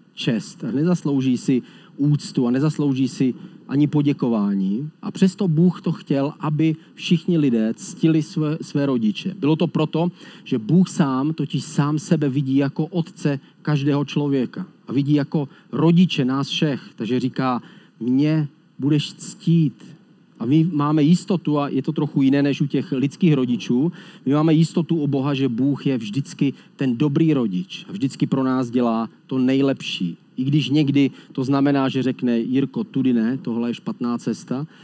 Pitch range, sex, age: 135-175 Hz, male, 40-59